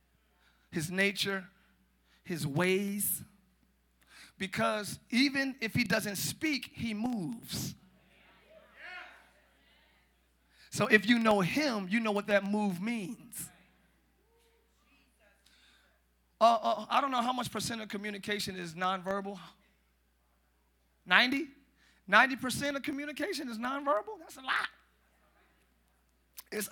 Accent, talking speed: American, 100 wpm